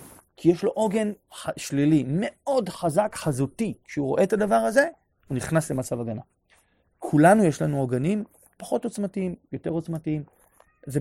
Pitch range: 135-190 Hz